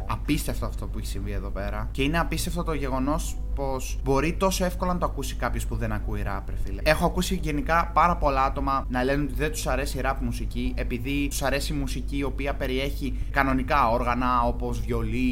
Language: Greek